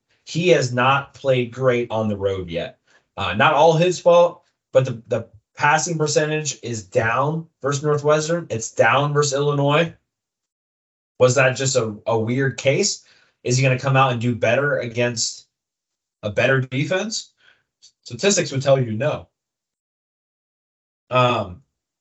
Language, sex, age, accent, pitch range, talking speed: English, male, 20-39, American, 110-140 Hz, 145 wpm